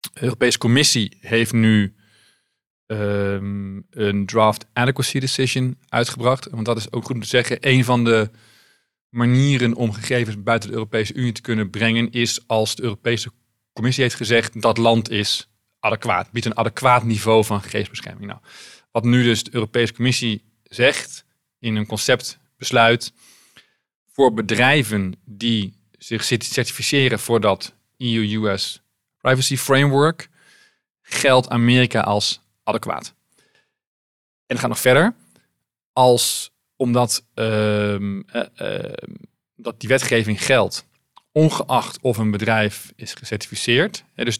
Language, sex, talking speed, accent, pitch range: Dutch, male, 130 wpm, Dutch, 110-125 Hz